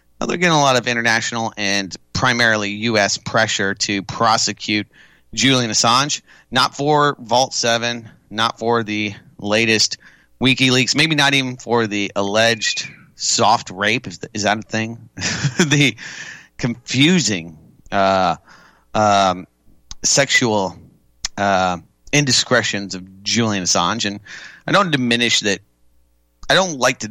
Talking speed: 120 wpm